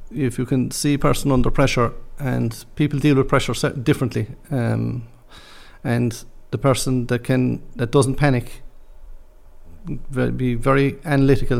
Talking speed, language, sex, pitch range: 140 wpm, English, male, 115-135 Hz